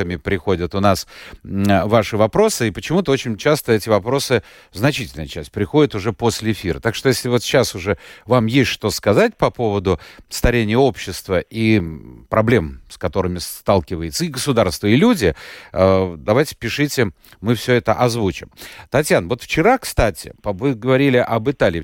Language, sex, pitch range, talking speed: Russian, male, 110-170 Hz, 150 wpm